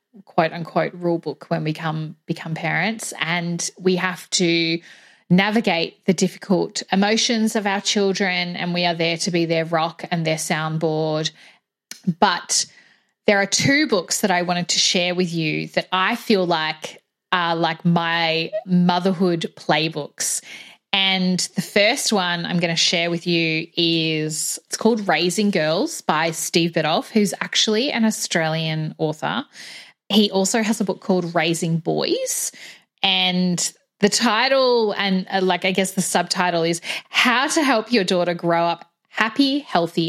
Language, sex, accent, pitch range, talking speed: English, female, Australian, 165-200 Hz, 155 wpm